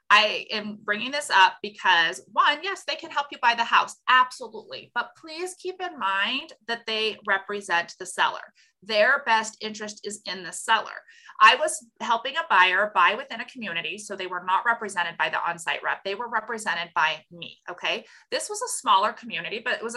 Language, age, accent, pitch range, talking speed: English, 30-49, American, 190-245 Hz, 195 wpm